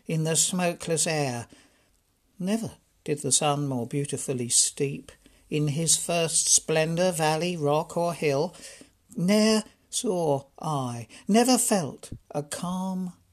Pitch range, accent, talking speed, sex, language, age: 145-190 Hz, British, 115 wpm, male, English, 60-79